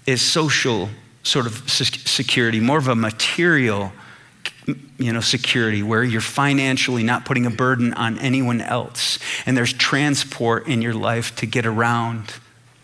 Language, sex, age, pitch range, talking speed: English, male, 30-49, 115-140 Hz, 145 wpm